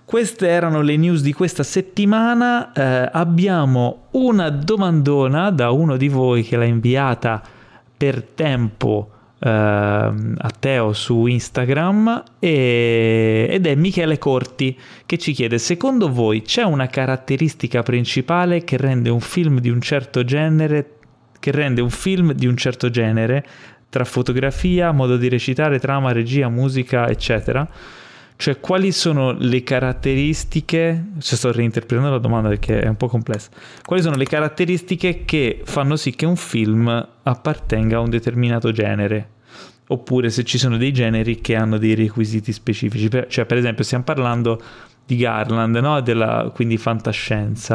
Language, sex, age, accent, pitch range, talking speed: Italian, male, 30-49, native, 115-145 Hz, 145 wpm